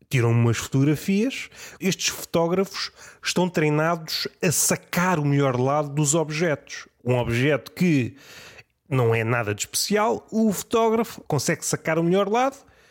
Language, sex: Portuguese, male